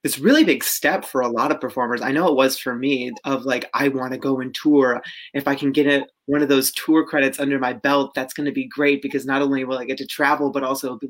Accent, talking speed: American, 265 wpm